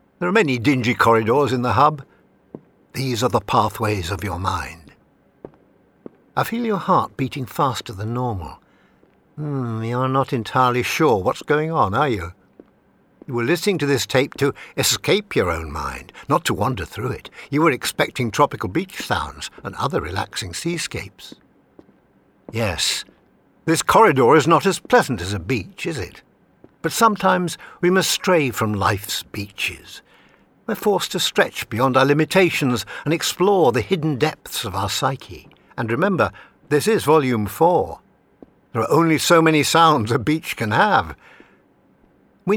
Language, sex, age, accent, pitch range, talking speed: English, male, 60-79, British, 110-155 Hz, 160 wpm